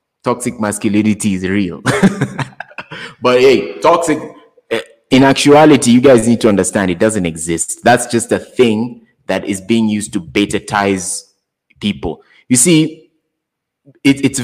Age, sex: 20-39, male